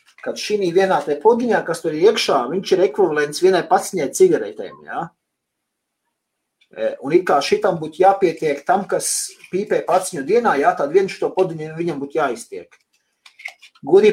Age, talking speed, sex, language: 40-59, 140 wpm, male, English